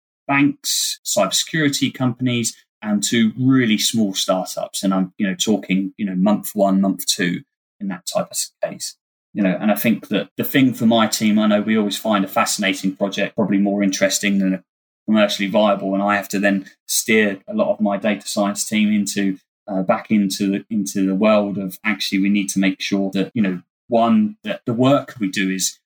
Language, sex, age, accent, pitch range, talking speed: English, male, 20-39, British, 95-120 Hz, 200 wpm